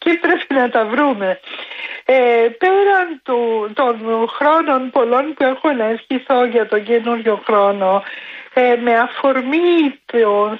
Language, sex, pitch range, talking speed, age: Greek, female, 205-275 Hz, 130 wpm, 60-79